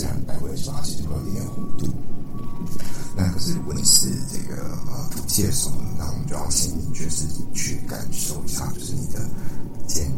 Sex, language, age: male, Chinese, 60-79